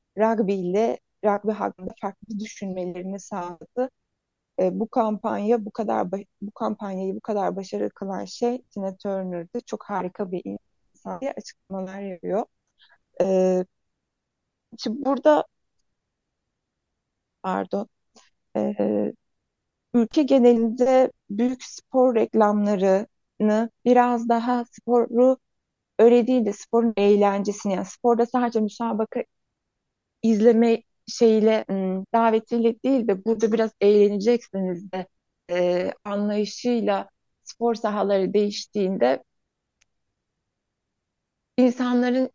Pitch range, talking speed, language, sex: 190-235 Hz, 90 wpm, Turkish, female